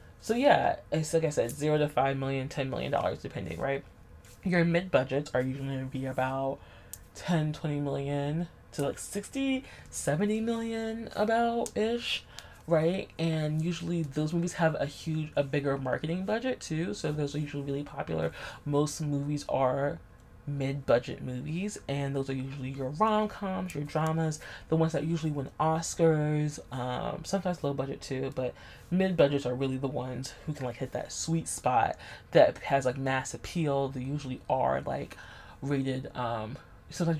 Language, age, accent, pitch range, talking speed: English, 20-39, American, 130-165 Hz, 165 wpm